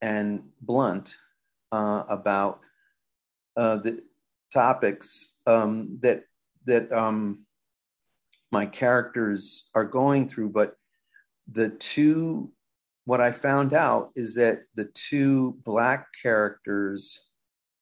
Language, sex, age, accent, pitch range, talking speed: English, male, 50-69, American, 105-135 Hz, 100 wpm